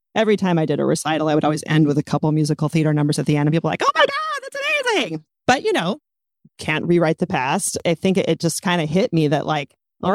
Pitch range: 155-195 Hz